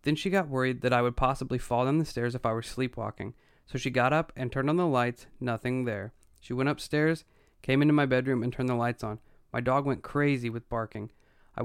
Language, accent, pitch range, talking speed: English, American, 115-140 Hz, 235 wpm